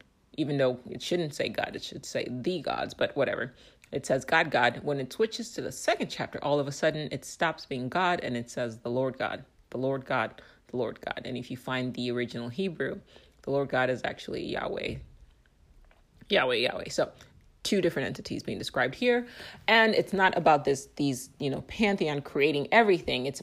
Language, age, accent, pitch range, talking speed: English, 30-49, American, 130-175 Hz, 200 wpm